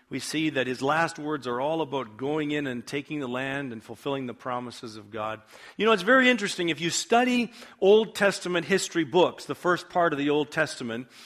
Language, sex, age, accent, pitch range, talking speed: English, male, 50-69, American, 135-175 Hz, 215 wpm